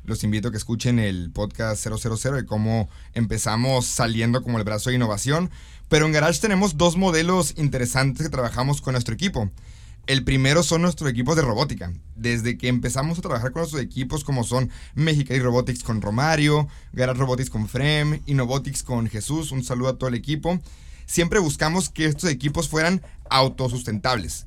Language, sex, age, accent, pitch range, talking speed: Spanish, male, 30-49, Mexican, 115-155 Hz, 175 wpm